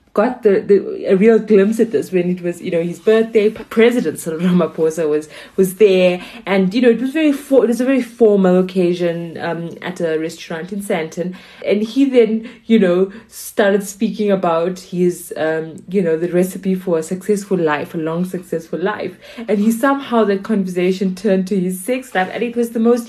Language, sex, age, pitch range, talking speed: English, female, 20-39, 185-230 Hz, 205 wpm